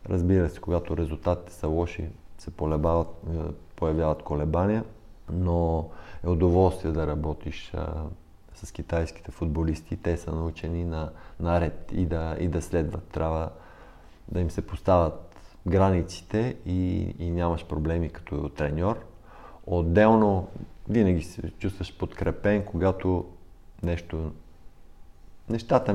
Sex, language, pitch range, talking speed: male, Bulgarian, 80-100 Hz, 110 wpm